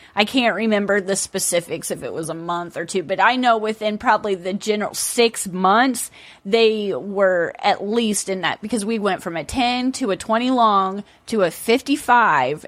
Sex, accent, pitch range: female, American, 195-240 Hz